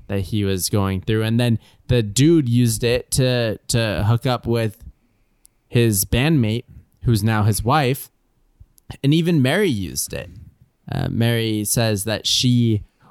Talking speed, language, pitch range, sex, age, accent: 145 wpm, English, 110-135 Hz, male, 20-39, American